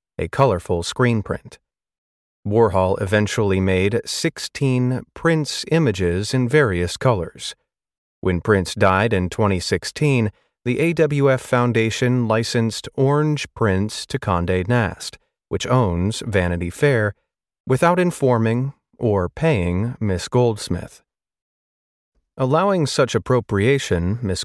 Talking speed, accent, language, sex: 100 wpm, American, English, male